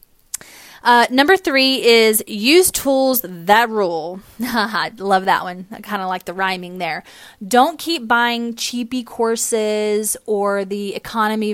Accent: American